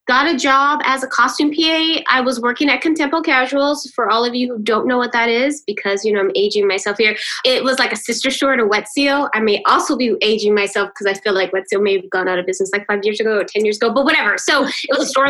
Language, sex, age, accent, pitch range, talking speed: English, female, 20-39, American, 225-300 Hz, 285 wpm